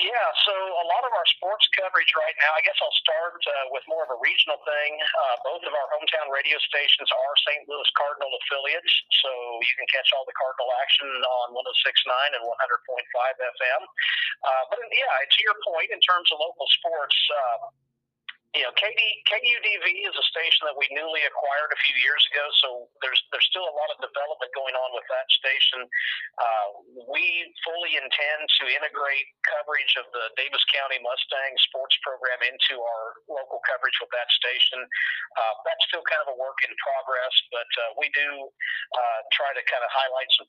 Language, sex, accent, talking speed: English, male, American, 180 wpm